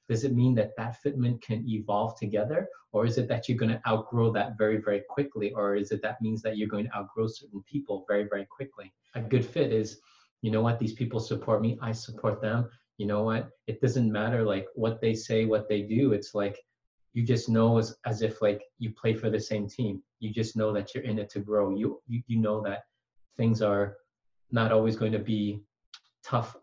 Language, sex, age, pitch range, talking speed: English, male, 30-49, 105-115 Hz, 225 wpm